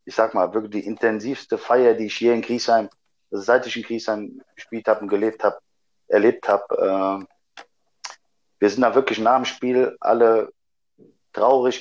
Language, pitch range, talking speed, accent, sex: German, 115-140 Hz, 170 wpm, German, male